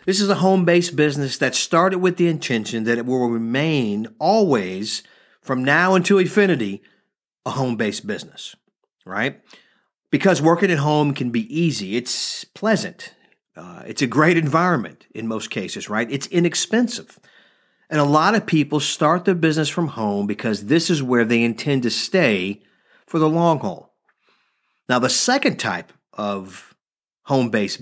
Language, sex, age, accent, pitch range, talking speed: English, male, 50-69, American, 120-175 Hz, 155 wpm